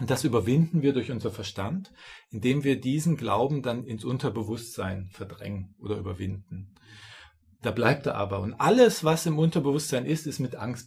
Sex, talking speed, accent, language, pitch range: male, 165 wpm, German, German, 110-145 Hz